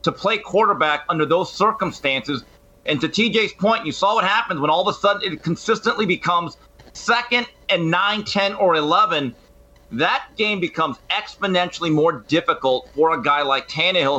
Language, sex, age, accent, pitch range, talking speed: English, male, 40-59, American, 155-220 Hz, 165 wpm